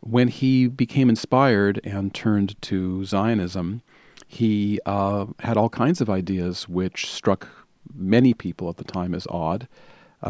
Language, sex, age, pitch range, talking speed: English, male, 40-59, 95-115 Hz, 145 wpm